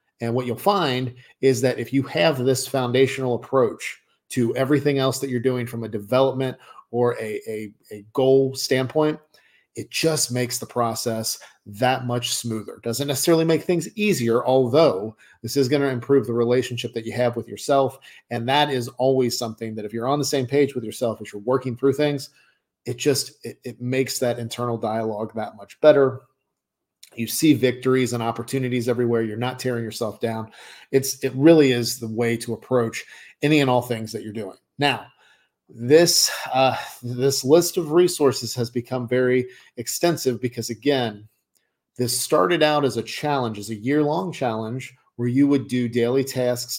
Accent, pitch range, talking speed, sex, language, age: American, 120-135 Hz, 175 wpm, male, English, 40-59